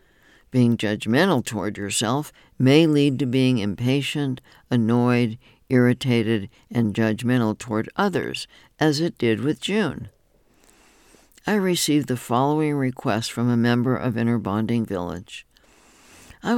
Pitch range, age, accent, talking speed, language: 120-155 Hz, 60-79, American, 120 wpm, English